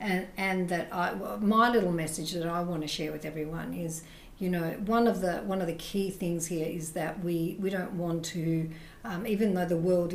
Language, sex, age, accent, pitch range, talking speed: English, female, 50-69, Australian, 170-195 Hz, 225 wpm